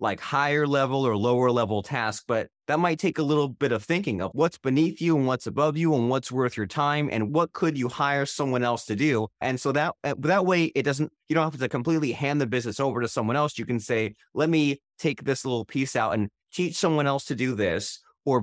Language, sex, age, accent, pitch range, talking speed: English, male, 30-49, American, 120-155 Hz, 245 wpm